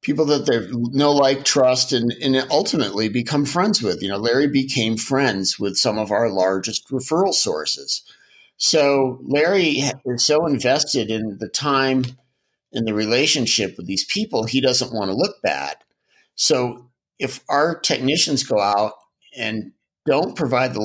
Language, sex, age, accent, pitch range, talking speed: English, male, 50-69, American, 110-140 Hz, 155 wpm